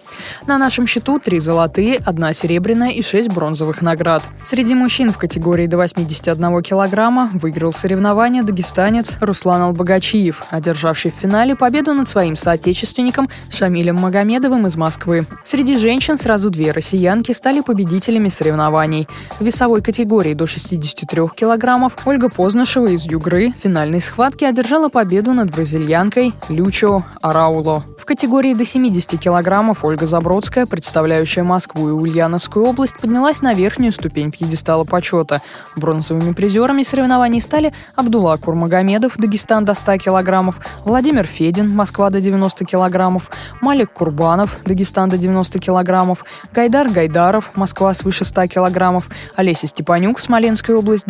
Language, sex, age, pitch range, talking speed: Russian, female, 20-39, 170-230 Hz, 130 wpm